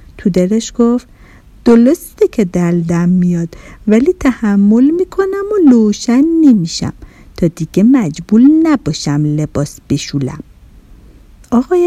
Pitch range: 185-275 Hz